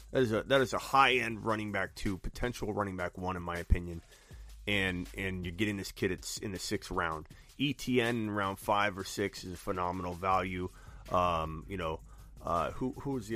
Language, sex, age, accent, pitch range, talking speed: English, male, 30-49, American, 90-130 Hz, 200 wpm